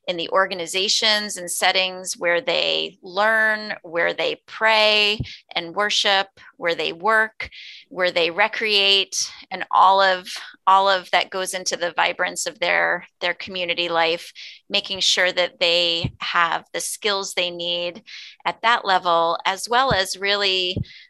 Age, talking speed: 30-49, 140 wpm